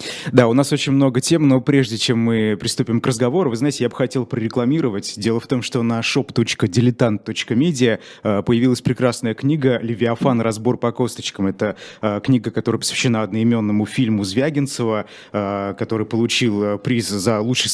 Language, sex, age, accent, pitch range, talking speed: Russian, male, 20-39, native, 110-130 Hz, 150 wpm